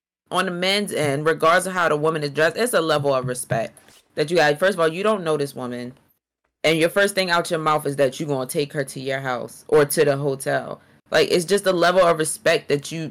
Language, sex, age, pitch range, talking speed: English, female, 20-39, 145-185 Hz, 260 wpm